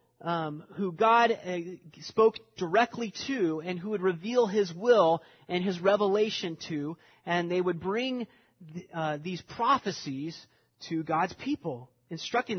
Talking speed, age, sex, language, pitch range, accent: 135 wpm, 30-49, male, English, 155-210 Hz, American